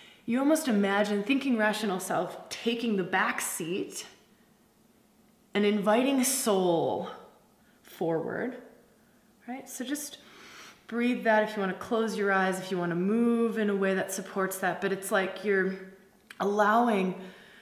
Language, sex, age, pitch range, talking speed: English, female, 20-39, 190-240 Hz, 145 wpm